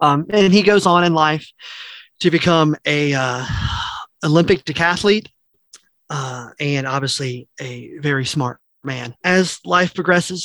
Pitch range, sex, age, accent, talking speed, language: 140-175 Hz, male, 30-49, American, 130 wpm, English